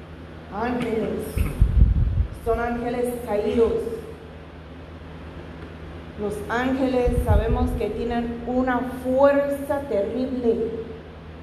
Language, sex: Spanish, female